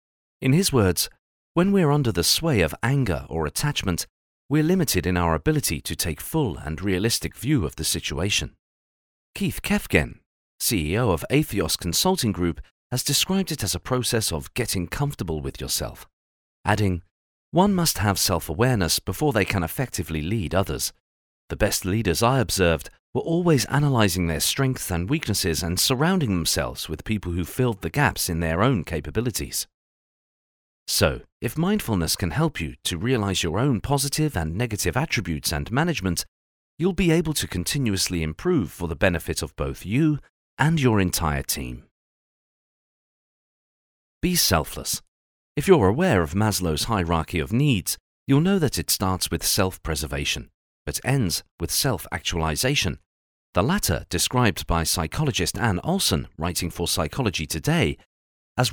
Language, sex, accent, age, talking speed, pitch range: English, male, British, 40-59, 150 wpm, 80-130 Hz